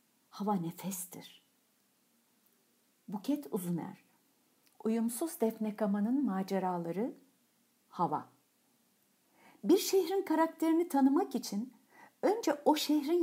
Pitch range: 215-285 Hz